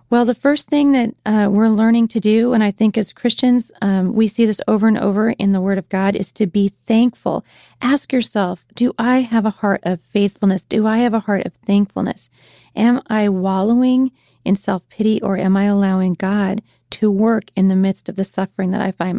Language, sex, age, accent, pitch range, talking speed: English, female, 30-49, American, 195-230 Hz, 215 wpm